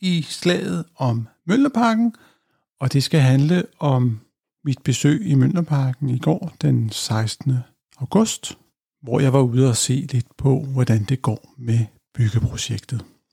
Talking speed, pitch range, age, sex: 140 wpm, 125-160 Hz, 60-79, male